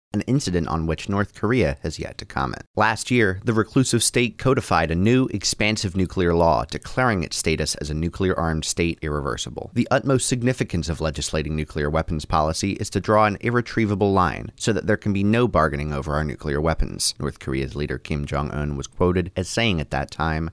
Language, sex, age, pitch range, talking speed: English, male, 30-49, 80-110 Hz, 195 wpm